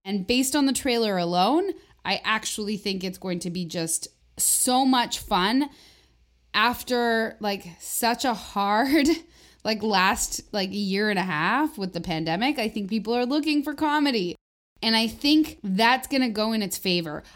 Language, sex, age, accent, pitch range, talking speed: English, female, 20-39, American, 185-250 Hz, 170 wpm